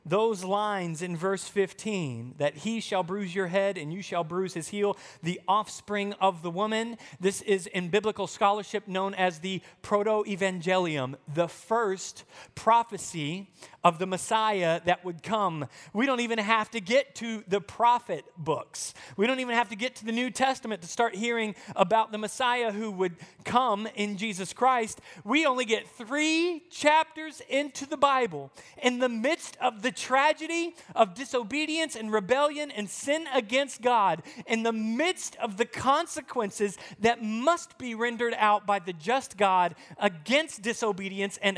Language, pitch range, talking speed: English, 195-275 Hz, 160 wpm